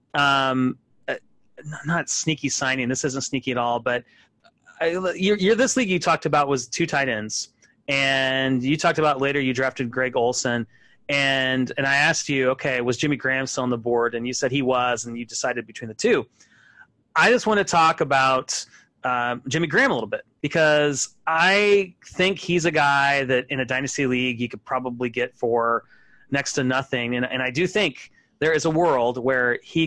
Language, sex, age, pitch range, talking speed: English, male, 30-49, 130-165 Hz, 195 wpm